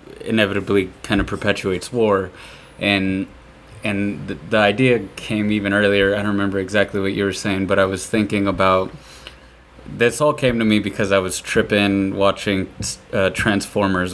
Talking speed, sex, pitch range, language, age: 160 wpm, male, 95-105 Hz, English, 20-39